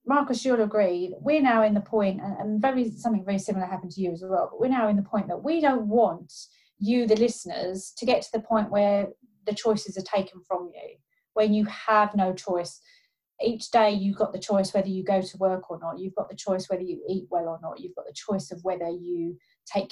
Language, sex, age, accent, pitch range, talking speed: English, female, 30-49, British, 185-245 Hz, 240 wpm